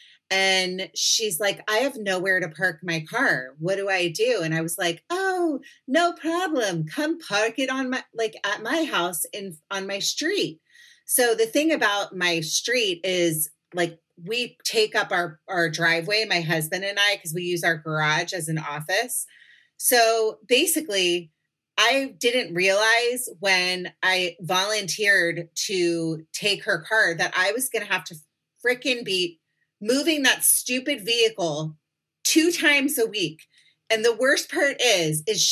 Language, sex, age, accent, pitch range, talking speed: English, female, 30-49, American, 185-280 Hz, 160 wpm